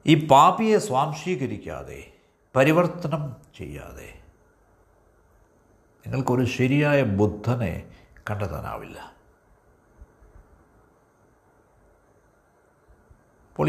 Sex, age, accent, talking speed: male, 60-79, native, 45 wpm